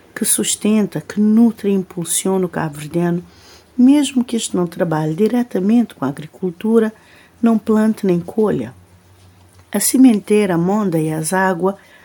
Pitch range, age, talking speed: 165-220 Hz, 50-69, 145 wpm